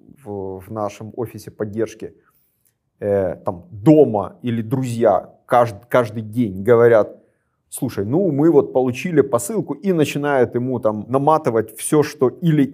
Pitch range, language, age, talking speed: 115-145 Hz, Ukrainian, 30-49, 120 wpm